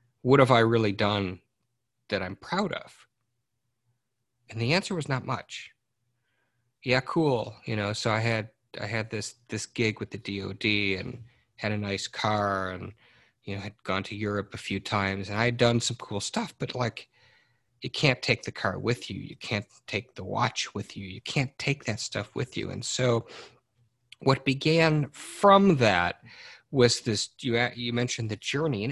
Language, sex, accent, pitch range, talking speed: English, male, American, 110-135 Hz, 185 wpm